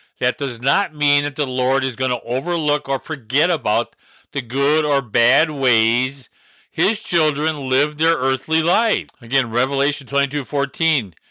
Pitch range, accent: 125-160 Hz, American